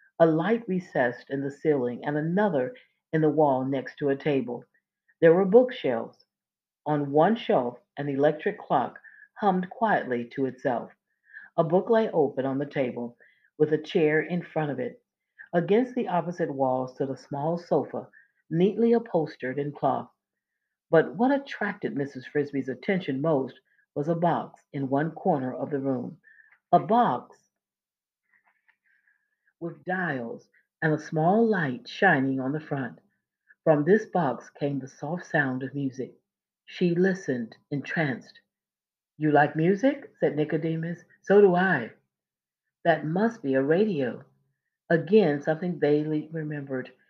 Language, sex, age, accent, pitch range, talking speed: English, female, 50-69, American, 140-185 Hz, 140 wpm